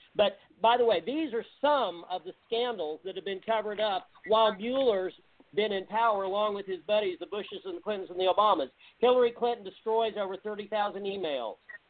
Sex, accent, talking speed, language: male, American, 190 wpm, English